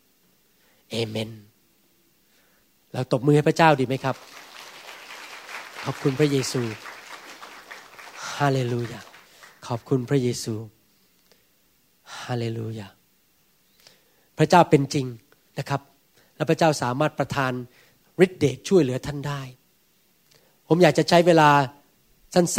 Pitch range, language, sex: 140-185 Hz, Thai, male